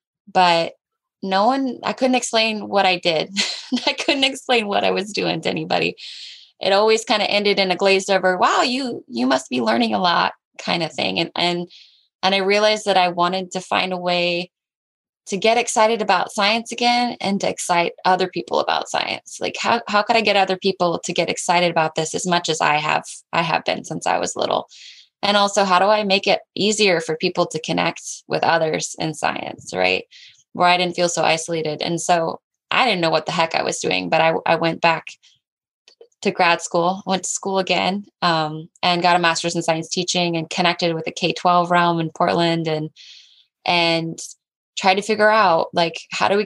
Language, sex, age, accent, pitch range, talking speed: English, female, 10-29, American, 170-200 Hz, 210 wpm